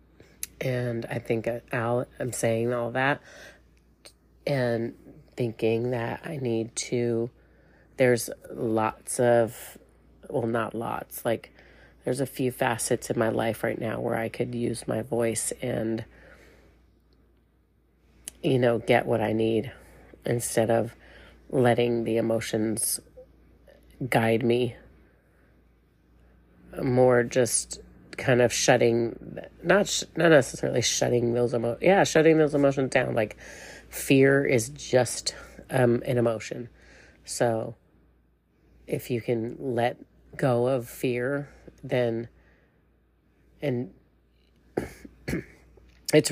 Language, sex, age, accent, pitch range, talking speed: English, female, 30-49, American, 110-125 Hz, 110 wpm